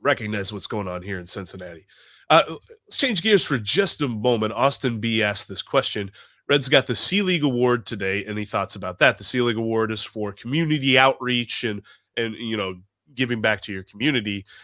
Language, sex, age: English, male, 30-49